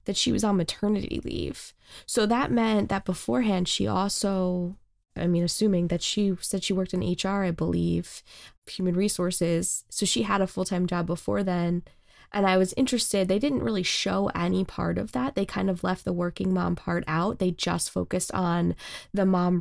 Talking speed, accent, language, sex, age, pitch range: 195 wpm, American, English, female, 10-29, 180-210 Hz